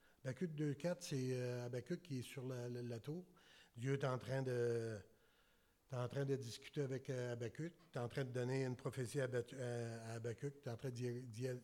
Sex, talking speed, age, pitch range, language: male, 230 wpm, 60-79, 120-140 Hz, French